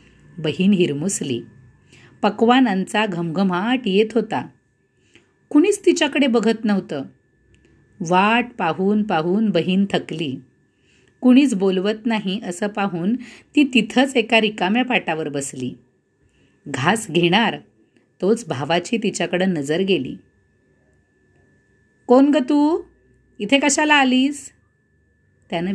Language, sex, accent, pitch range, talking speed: Marathi, female, native, 160-245 Hz, 95 wpm